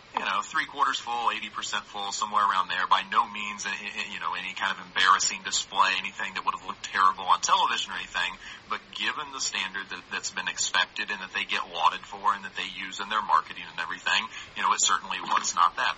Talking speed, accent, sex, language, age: 230 wpm, American, male, English, 30-49